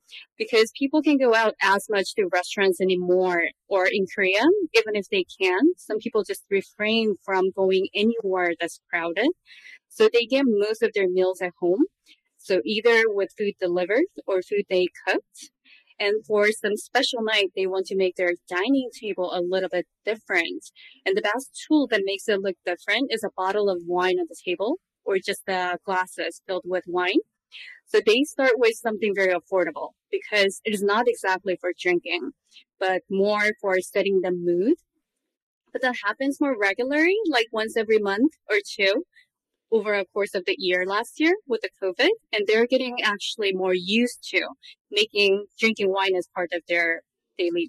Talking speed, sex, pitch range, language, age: 175 wpm, female, 185-270 Hz, English, 20-39